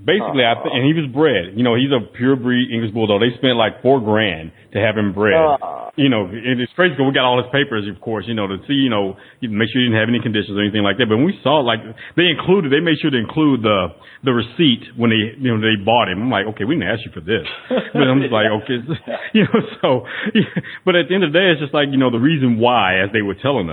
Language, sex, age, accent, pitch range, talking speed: English, male, 30-49, American, 105-140 Hz, 285 wpm